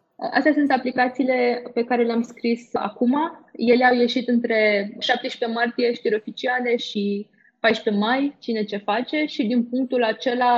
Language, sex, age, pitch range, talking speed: Romanian, female, 20-39, 210-240 Hz, 145 wpm